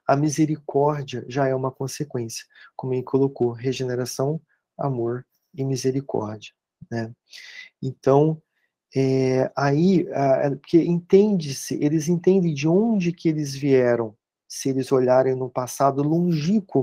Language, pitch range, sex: Portuguese, 125-155 Hz, male